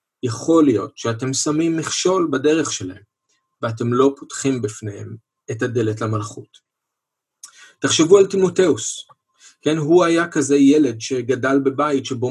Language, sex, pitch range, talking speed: Hebrew, male, 120-150 Hz, 120 wpm